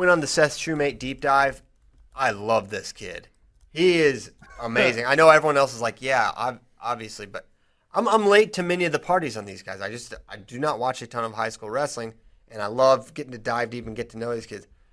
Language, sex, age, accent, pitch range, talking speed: English, male, 30-49, American, 115-150 Hz, 240 wpm